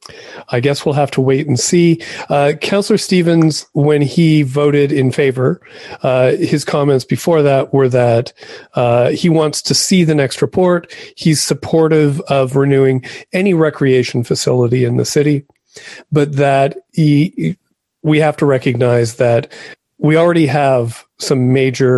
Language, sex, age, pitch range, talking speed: English, male, 40-59, 125-150 Hz, 145 wpm